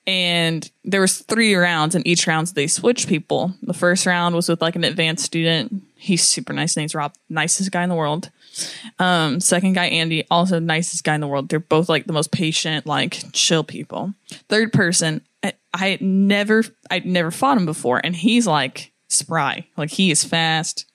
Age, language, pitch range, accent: 10-29, English, 160-205 Hz, American